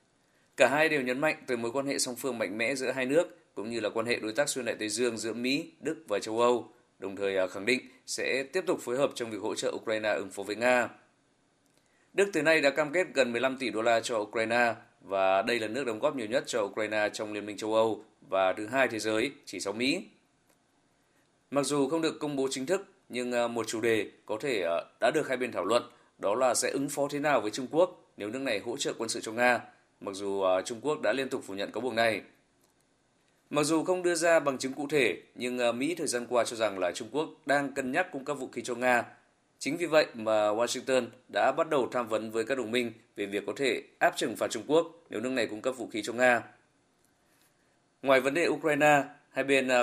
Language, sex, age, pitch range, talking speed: Vietnamese, male, 20-39, 110-140 Hz, 245 wpm